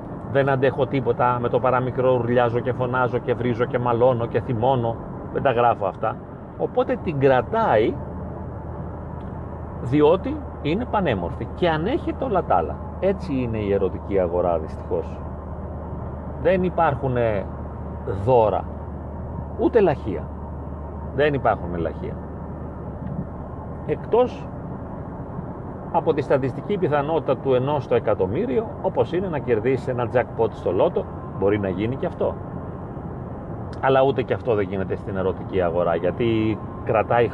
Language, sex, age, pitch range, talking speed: Greek, male, 40-59, 95-130 Hz, 125 wpm